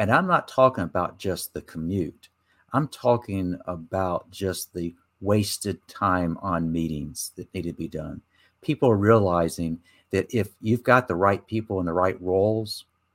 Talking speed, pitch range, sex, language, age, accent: 165 wpm, 90-115 Hz, male, English, 50-69, American